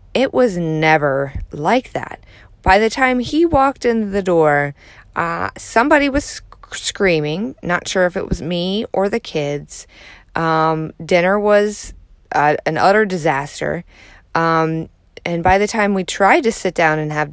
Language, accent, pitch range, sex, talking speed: English, American, 165-225 Hz, female, 160 wpm